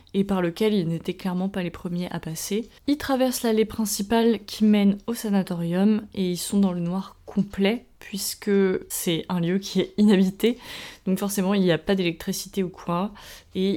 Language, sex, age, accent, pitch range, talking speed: English, female, 20-39, French, 175-210 Hz, 185 wpm